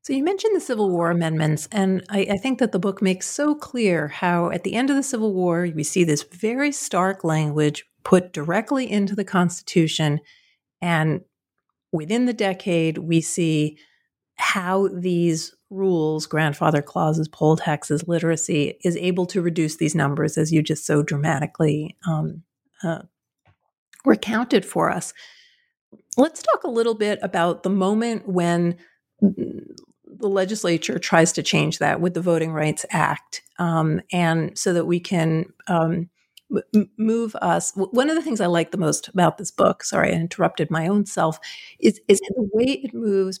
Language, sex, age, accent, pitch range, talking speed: English, female, 50-69, American, 165-205 Hz, 165 wpm